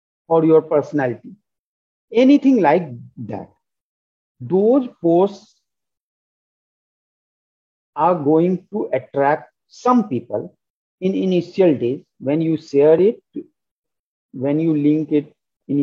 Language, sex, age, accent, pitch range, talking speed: English, male, 50-69, Indian, 135-210 Hz, 100 wpm